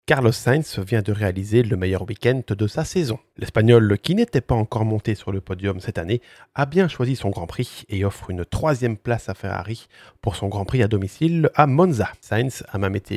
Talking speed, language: 215 wpm, French